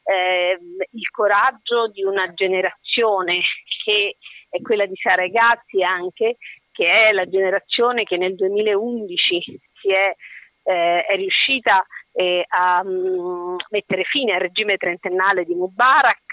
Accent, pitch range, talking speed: native, 185-230 Hz, 125 wpm